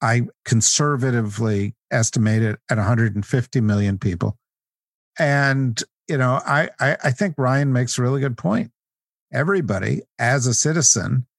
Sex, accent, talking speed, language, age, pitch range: male, American, 140 wpm, English, 50-69, 120-150 Hz